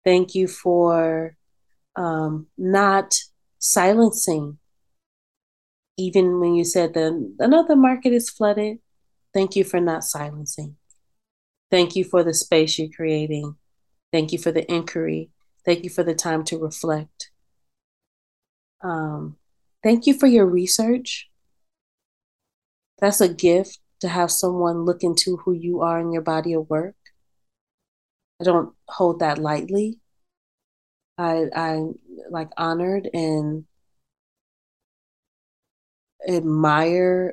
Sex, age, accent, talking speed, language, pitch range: female, 30-49, American, 115 wpm, English, 155-185 Hz